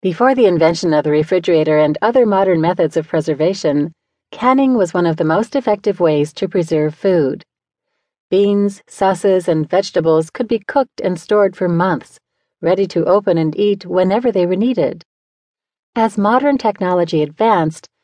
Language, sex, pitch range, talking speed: English, female, 160-220 Hz, 155 wpm